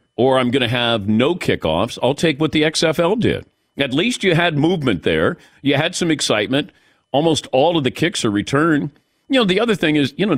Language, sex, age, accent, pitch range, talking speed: English, male, 50-69, American, 120-160 Hz, 220 wpm